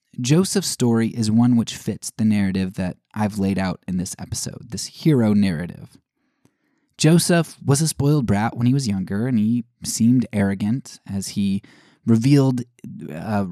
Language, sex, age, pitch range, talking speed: English, male, 20-39, 105-135 Hz, 155 wpm